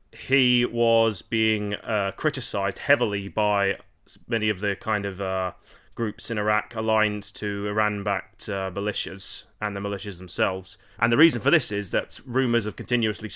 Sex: male